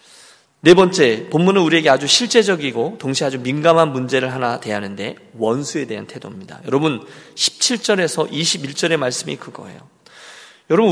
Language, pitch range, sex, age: Korean, 145-190 Hz, male, 40-59